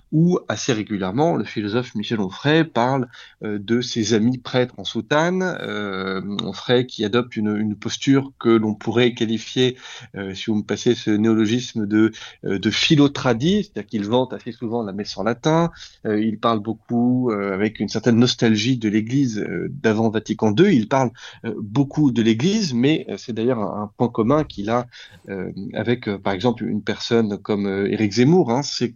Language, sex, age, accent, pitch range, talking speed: French, male, 30-49, French, 110-135 Hz, 185 wpm